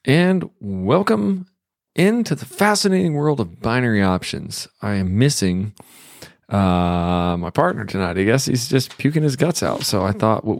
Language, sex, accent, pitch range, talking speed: English, male, American, 95-140 Hz, 160 wpm